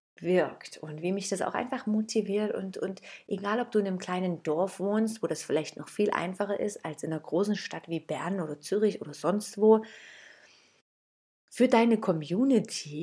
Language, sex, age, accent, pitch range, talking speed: German, female, 30-49, German, 165-215 Hz, 185 wpm